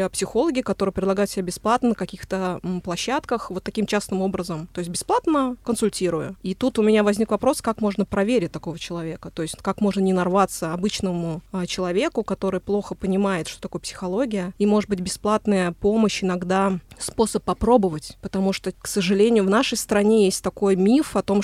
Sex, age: female, 20-39